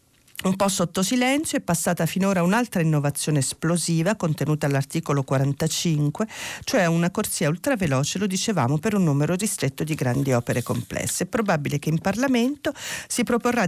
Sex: female